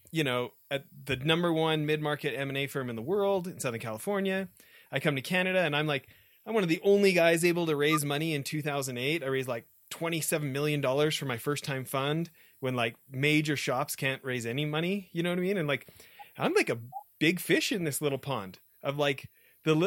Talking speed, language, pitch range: 215 wpm, English, 140-180 Hz